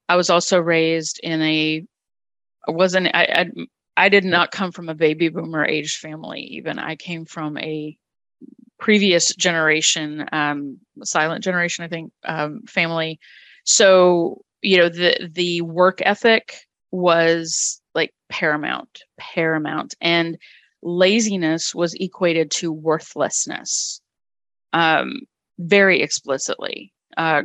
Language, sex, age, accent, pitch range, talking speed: English, female, 30-49, American, 155-215 Hz, 120 wpm